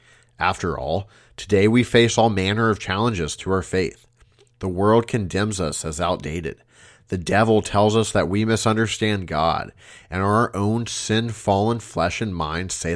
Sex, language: male, English